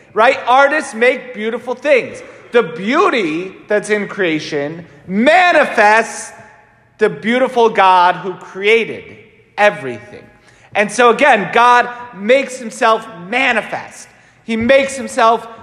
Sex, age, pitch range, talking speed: male, 40-59, 190-260 Hz, 105 wpm